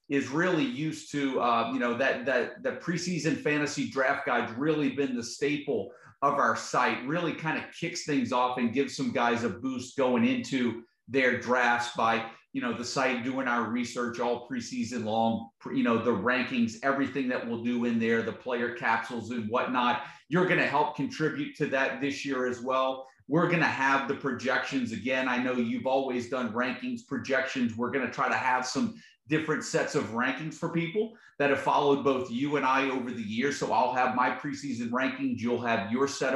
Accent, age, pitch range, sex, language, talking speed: American, 40-59, 120-145 Hz, male, English, 200 wpm